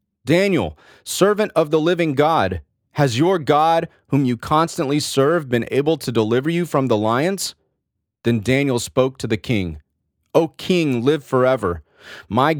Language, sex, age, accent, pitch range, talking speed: English, male, 30-49, American, 105-145 Hz, 150 wpm